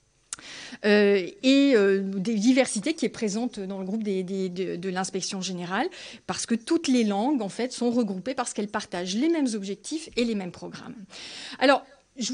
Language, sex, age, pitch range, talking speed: French, female, 40-59, 200-265 Hz, 185 wpm